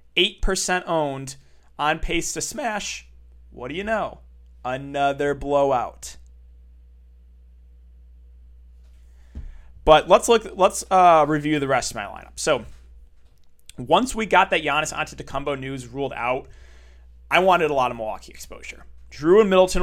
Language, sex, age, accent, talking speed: English, male, 20-39, American, 135 wpm